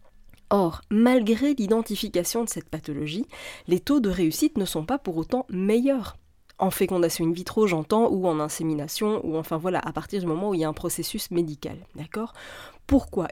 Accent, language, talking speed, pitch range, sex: French, French, 180 wpm, 170-225 Hz, female